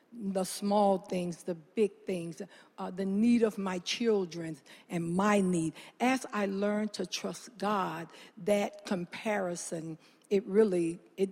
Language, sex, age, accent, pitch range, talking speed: English, female, 60-79, American, 180-220 Hz, 140 wpm